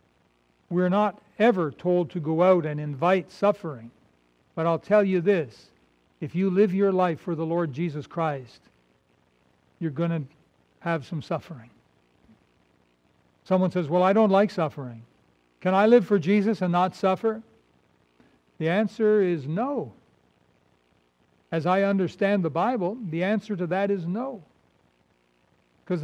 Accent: American